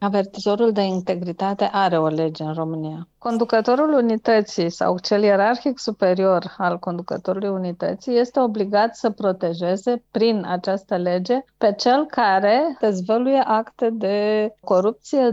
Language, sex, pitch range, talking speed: Romanian, female, 185-225 Hz, 120 wpm